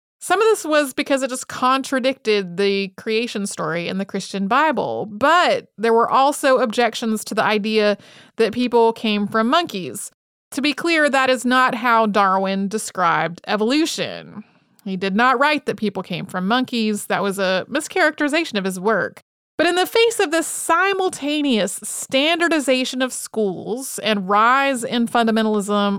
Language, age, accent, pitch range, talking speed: English, 30-49, American, 200-255 Hz, 155 wpm